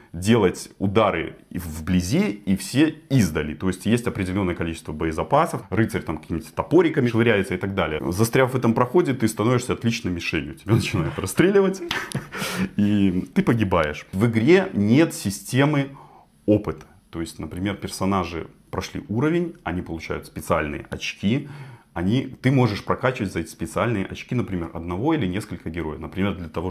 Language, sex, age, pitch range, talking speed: Russian, male, 30-49, 90-125 Hz, 145 wpm